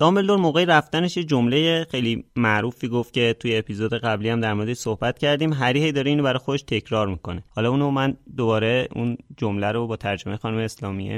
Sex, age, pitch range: male, 30-49, 110-145 Hz